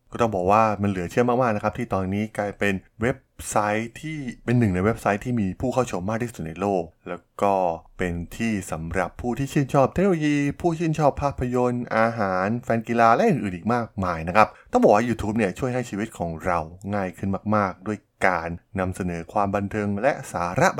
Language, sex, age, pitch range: Thai, male, 20-39, 90-120 Hz